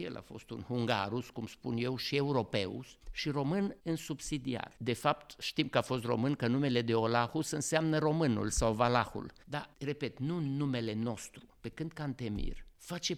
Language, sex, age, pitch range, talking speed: English, male, 50-69, 115-150 Hz, 175 wpm